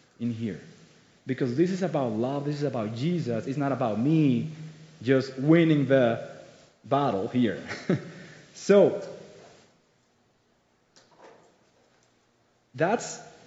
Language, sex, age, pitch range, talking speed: English, male, 30-49, 140-185 Hz, 100 wpm